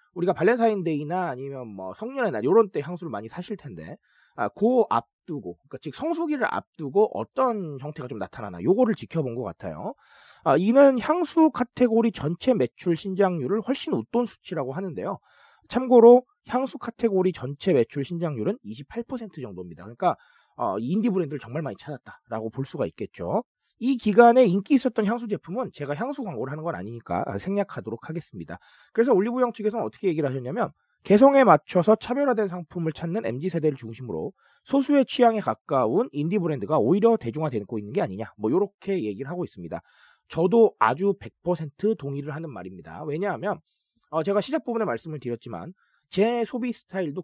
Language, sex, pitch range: Korean, male, 145-230 Hz